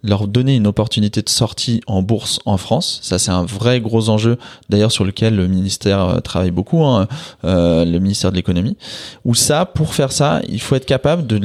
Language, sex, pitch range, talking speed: English, male, 100-130 Hz, 205 wpm